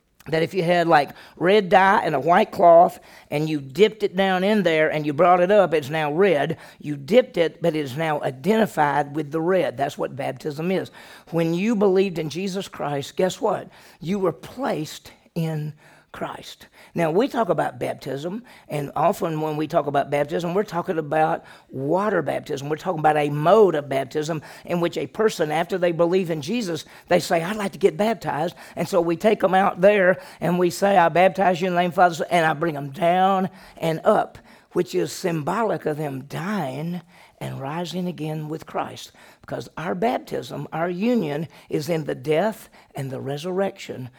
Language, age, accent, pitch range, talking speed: English, 50-69, American, 150-190 Hz, 195 wpm